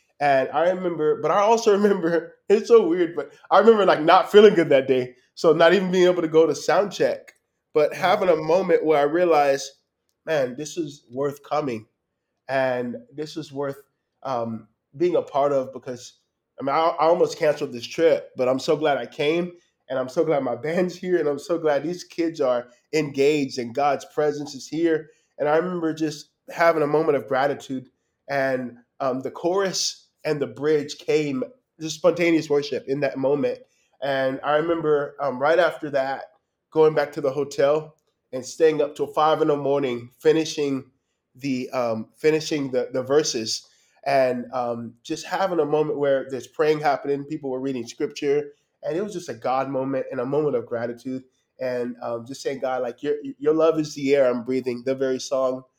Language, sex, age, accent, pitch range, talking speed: English, male, 20-39, American, 130-160 Hz, 190 wpm